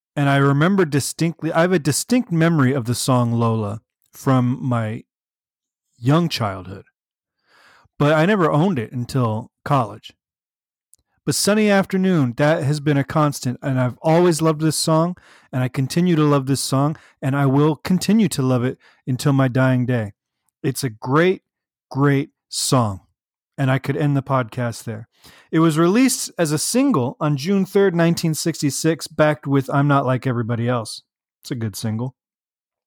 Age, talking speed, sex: 30-49, 160 wpm, male